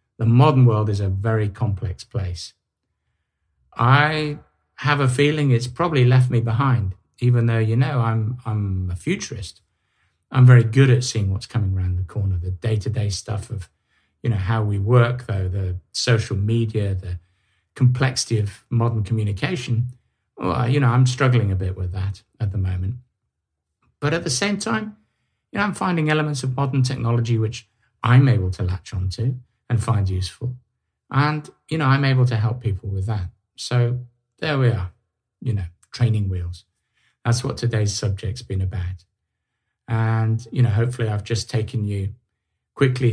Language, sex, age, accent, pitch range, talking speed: English, male, 50-69, British, 100-125 Hz, 165 wpm